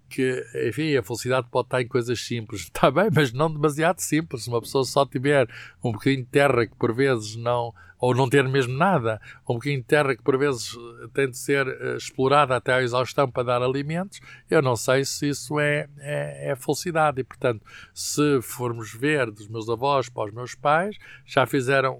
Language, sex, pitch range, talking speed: Portuguese, male, 120-145 Hz, 200 wpm